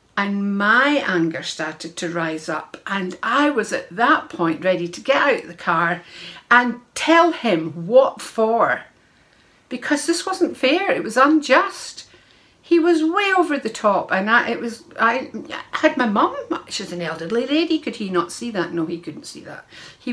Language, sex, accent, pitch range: English, female, British, 170-230 Hz